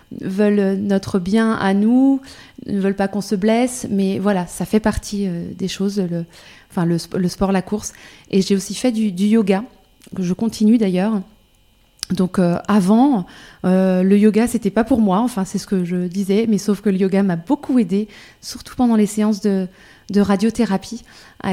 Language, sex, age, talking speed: French, female, 20-39, 190 wpm